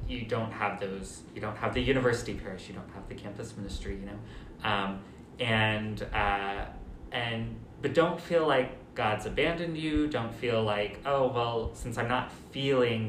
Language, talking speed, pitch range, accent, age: English, 175 wpm, 100-120 Hz, American, 20-39